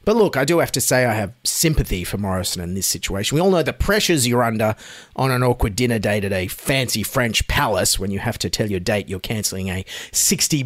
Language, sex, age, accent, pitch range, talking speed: English, male, 30-49, Australian, 110-165 Hz, 240 wpm